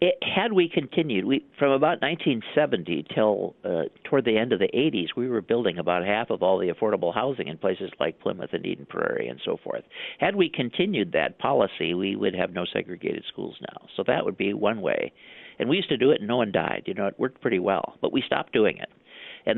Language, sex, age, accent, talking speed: English, male, 50-69, American, 225 wpm